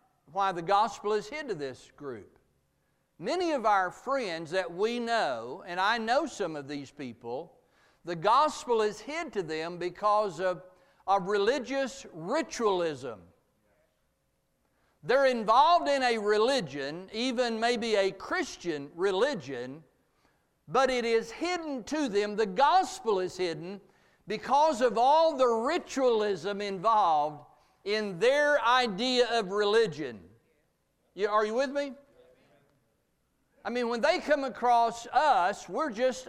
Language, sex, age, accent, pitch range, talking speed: English, male, 60-79, American, 185-265 Hz, 125 wpm